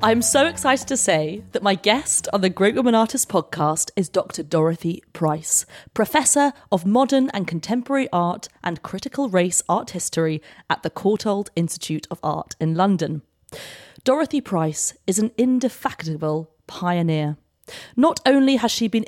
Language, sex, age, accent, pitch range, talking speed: English, female, 30-49, British, 165-240 Hz, 150 wpm